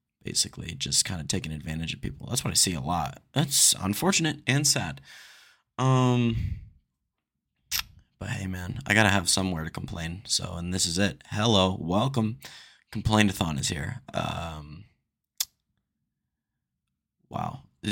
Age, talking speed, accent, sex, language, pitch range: 20-39, 135 wpm, American, male, English, 90-120 Hz